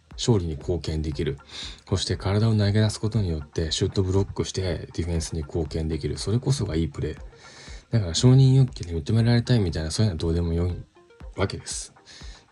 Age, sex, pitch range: 20-39, male, 85-120 Hz